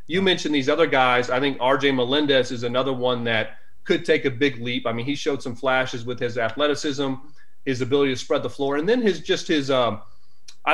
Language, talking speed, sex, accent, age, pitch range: English, 225 wpm, male, American, 30-49, 130-160 Hz